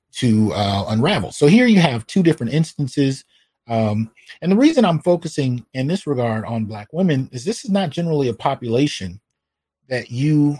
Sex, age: male, 30-49